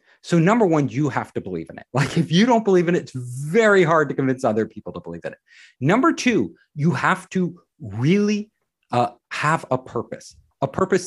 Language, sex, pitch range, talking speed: English, male, 125-185 Hz, 210 wpm